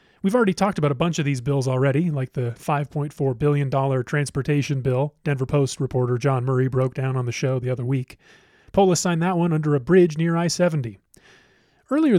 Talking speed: 190 wpm